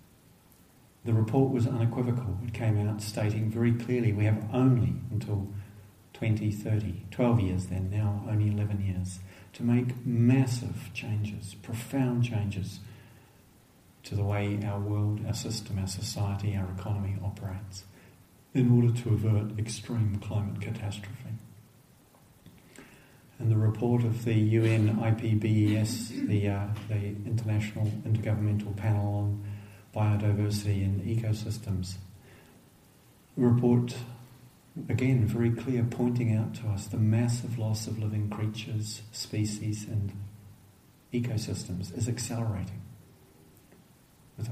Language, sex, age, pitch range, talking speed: English, male, 50-69, 105-120 Hz, 115 wpm